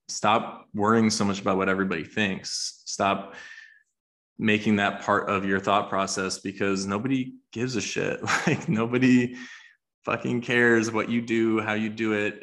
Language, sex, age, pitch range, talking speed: English, male, 20-39, 100-115 Hz, 155 wpm